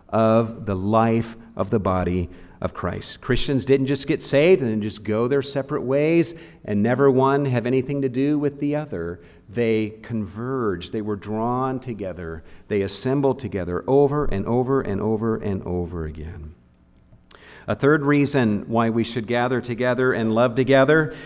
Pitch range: 115-145 Hz